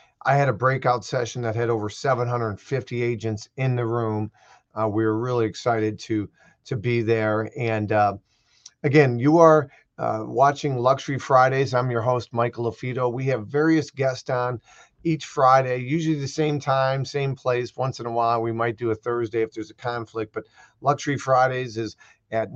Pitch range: 115-135 Hz